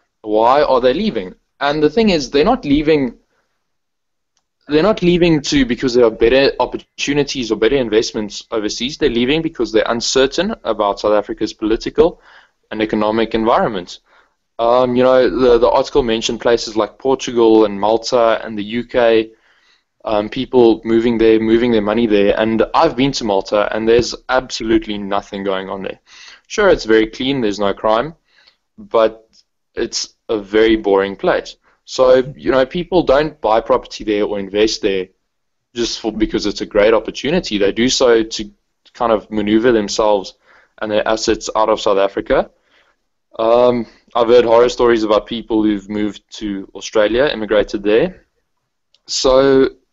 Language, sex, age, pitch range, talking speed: English, male, 20-39, 105-130 Hz, 155 wpm